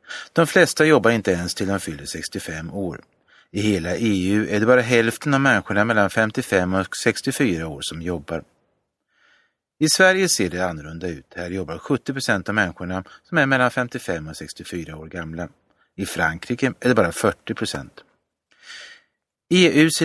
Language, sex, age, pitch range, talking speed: Swedish, male, 30-49, 90-125 Hz, 160 wpm